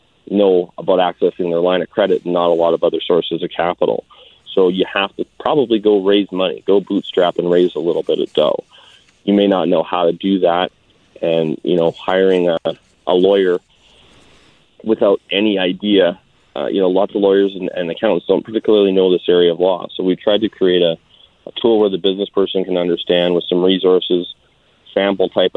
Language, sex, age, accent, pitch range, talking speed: English, male, 30-49, American, 85-100 Hz, 200 wpm